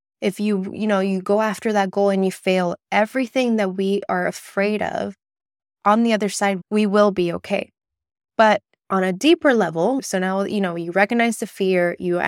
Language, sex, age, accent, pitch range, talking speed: English, female, 20-39, American, 185-230 Hz, 195 wpm